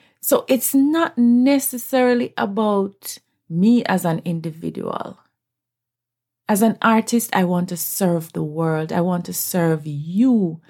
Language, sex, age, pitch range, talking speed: English, female, 30-49, 175-225 Hz, 130 wpm